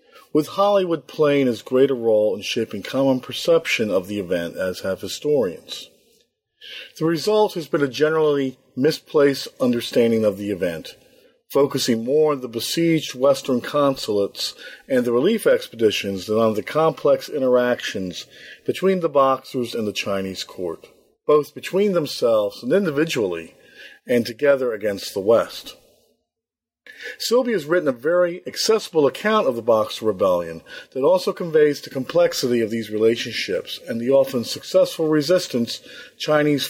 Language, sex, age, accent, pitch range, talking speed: English, male, 50-69, American, 120-175 Hz, 140 wpm